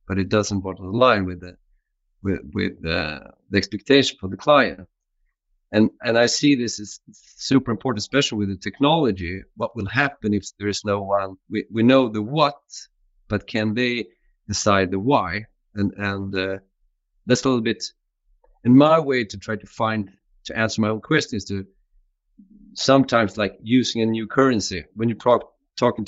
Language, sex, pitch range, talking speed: English, male, 100-125 Hz, 175 wpm